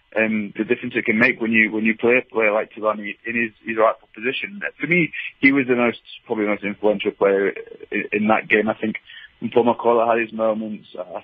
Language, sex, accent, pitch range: English, male, British, 105-120 Hz